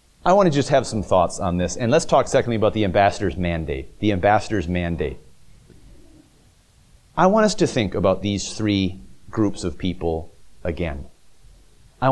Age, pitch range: 40-59, 110-170 Hz